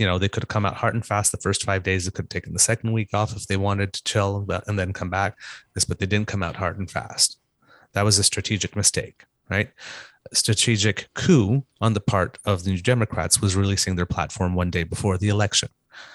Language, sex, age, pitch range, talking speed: English, male, 30-49, 90-110 Hz, 240 wpm